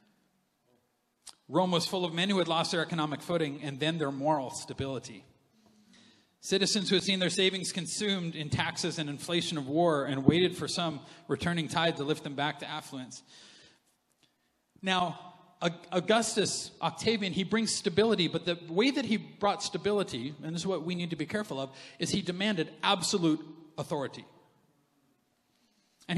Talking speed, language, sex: 160 wpm, English, male